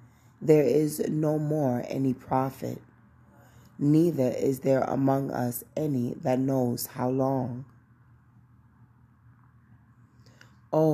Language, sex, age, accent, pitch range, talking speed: English, female, 20-39, American, 120-140 Hz, 95 wpm